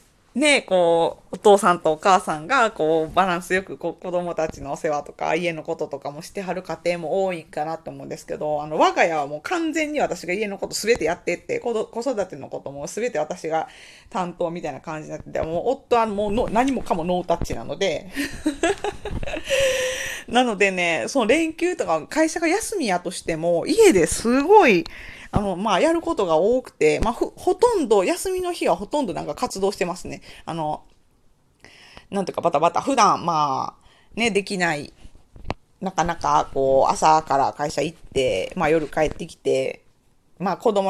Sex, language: female, Japanese